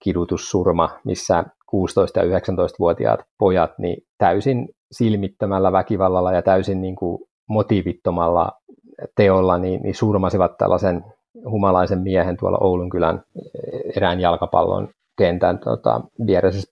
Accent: native